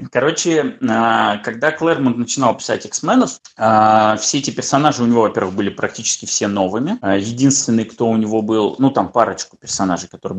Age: 20-39